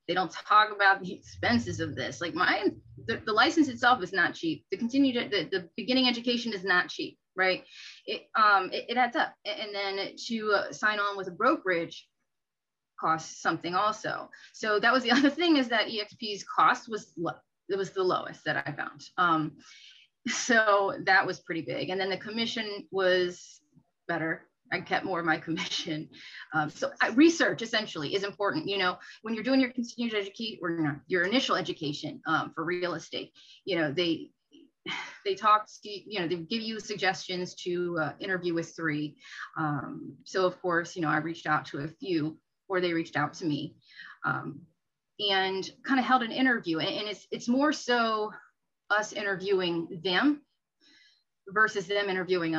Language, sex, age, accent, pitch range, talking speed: English, female, 20-39, American, 175-235 Hz, 180 wpm